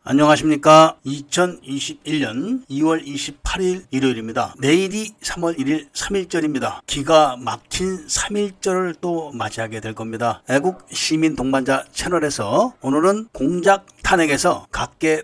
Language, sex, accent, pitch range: Korean, male, native, 135-175 Hz